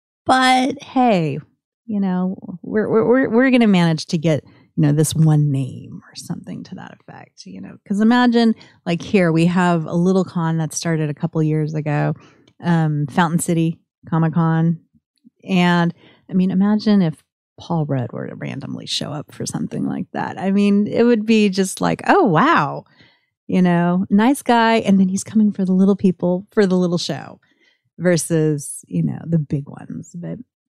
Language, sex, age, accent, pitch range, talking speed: English, female, 30-49, American, 155-210 Hz, 180 wpm